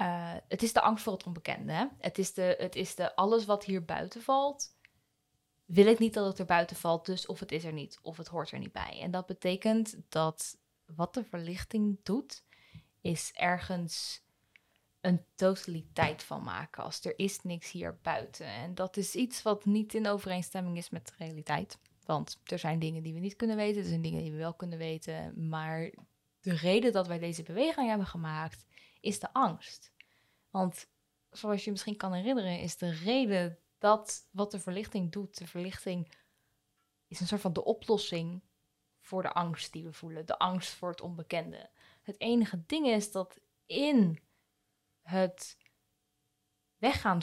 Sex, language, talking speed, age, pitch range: female, English, 180 wpm, 10-29, 170-210 Hz